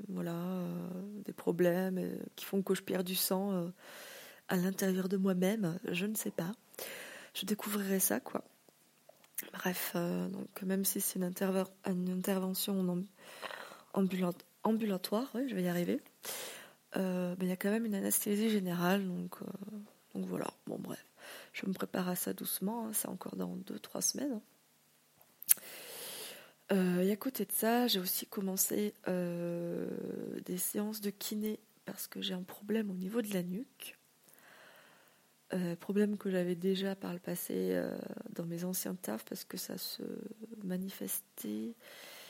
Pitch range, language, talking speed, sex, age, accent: 185-215 Hz, French, 165 wpm, female, 20-39, French